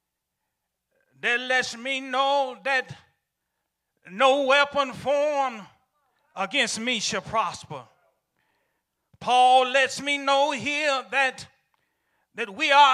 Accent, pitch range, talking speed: American, 215-285 Hz, 95 wpm